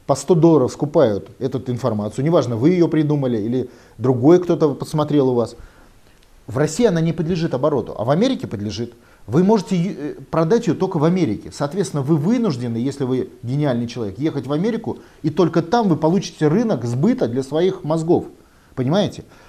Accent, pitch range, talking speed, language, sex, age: native, 125-175 Hz, 165 wpm, Russian, male, 30-49